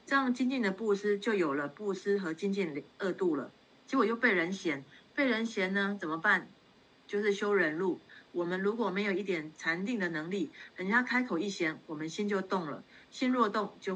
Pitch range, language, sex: 175-205 Hz, Chinese, female